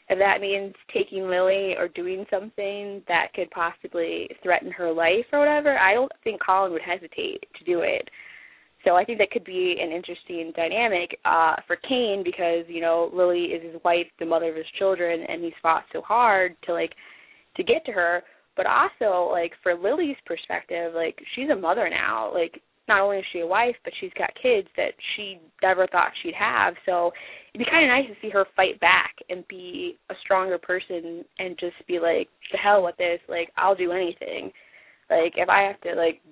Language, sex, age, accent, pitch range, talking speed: English, female, 20-39, American, 170-205 Hz, 200 wpm